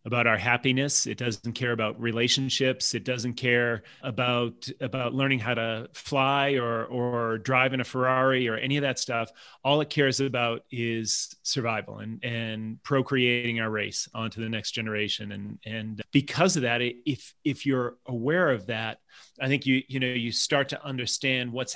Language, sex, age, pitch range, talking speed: English, male, 30-49, 120-145 Hz, 175 wpm